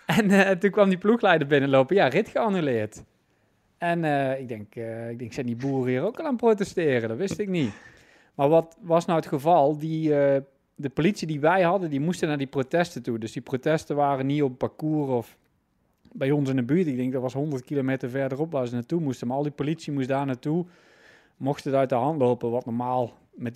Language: Dutch